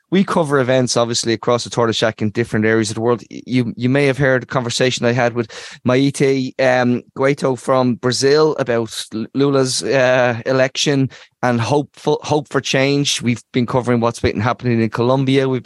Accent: Irish